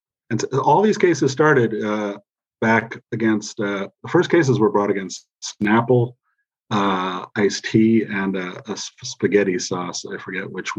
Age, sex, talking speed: 40-59, male, 150 wpm